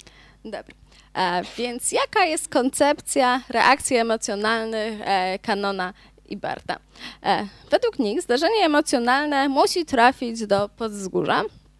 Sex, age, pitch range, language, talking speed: female, 20-39, 220-320 Hz, Polish, 90 wpm